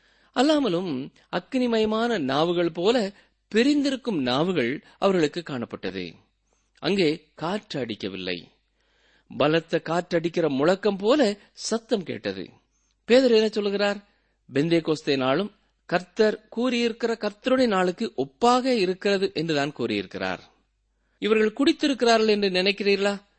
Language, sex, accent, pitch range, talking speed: Tamil, male, native, 130-215 Hz, 90 wpm